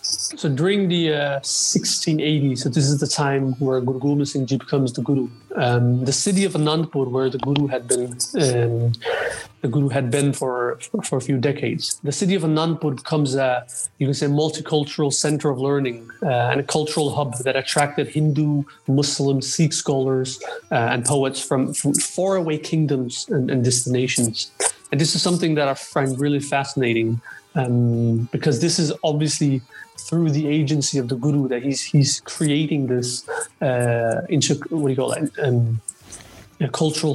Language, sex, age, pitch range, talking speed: English, male, 30-49, 130-150 Hz, 175 wpm